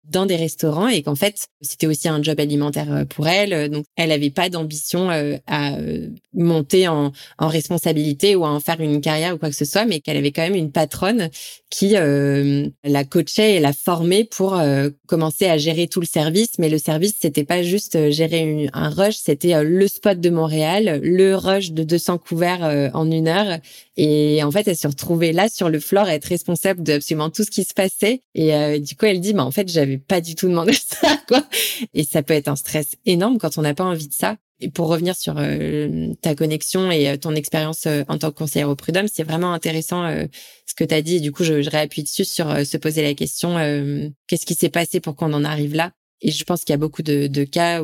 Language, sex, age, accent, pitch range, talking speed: French, female, 20-39, French, 150-180 Hz, 235 wpm